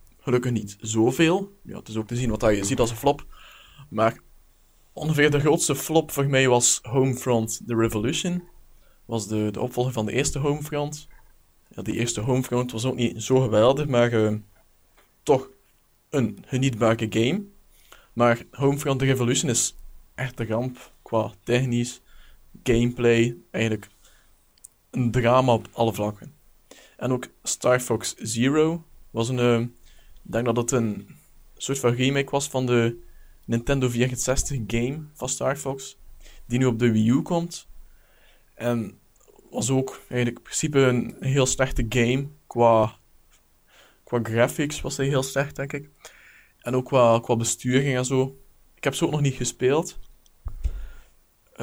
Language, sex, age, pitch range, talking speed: Dutch, male, 20-39, 115-135 Hz, 155 wpm